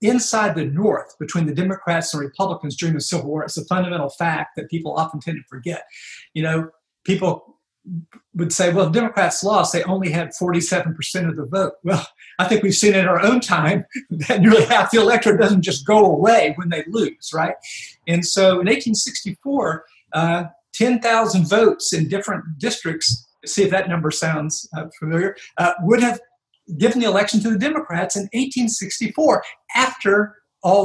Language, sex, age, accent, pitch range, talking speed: English, male, 50-69, American, 165-210 Hz, 180 wpm